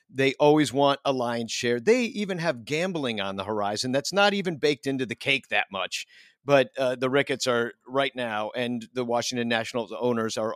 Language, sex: English, male